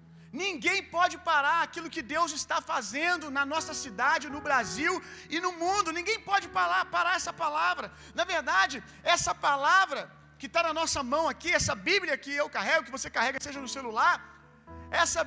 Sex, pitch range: male, 280-345 Hz